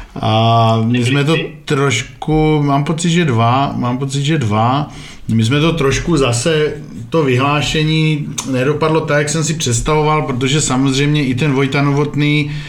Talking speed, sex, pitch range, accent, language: 145 wpm, male, 125-145 Hz, native, Czech